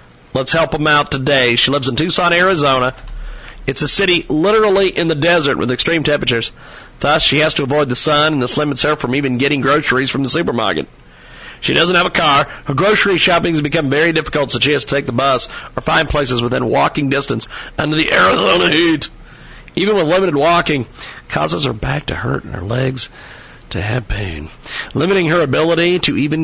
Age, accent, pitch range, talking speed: 40-59, American, 130-175 Hz, 200 wpm